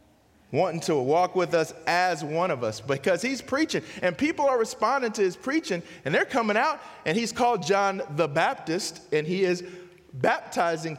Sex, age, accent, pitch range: male, 30-49, American, 155-230 Hz